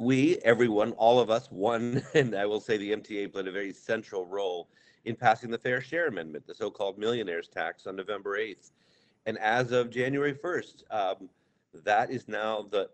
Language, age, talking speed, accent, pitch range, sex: English, 50-69, 185 wpm, American, 110-145 Hz, male